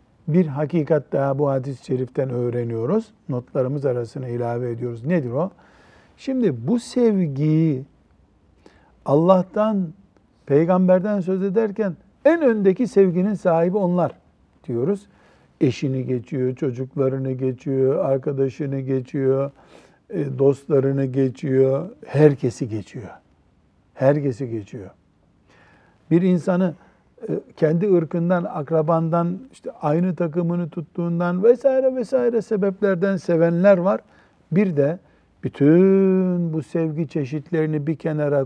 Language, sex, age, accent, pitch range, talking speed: Turkish, male, 60-79, native, 130-185 Hz, 95 wpm